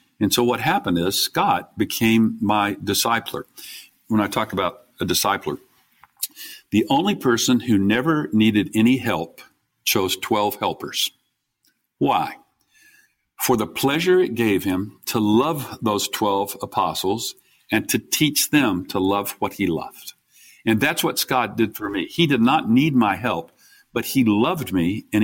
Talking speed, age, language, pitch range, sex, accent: 155 wpm, 50-69, English, 105-130 Hz, male, American